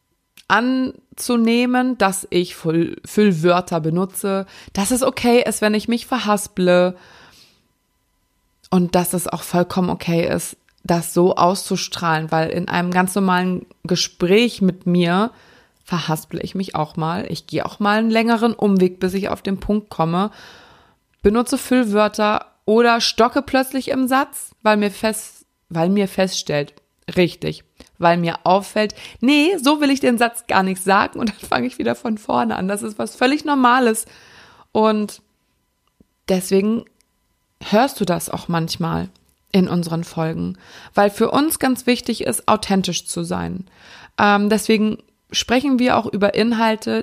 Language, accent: German, German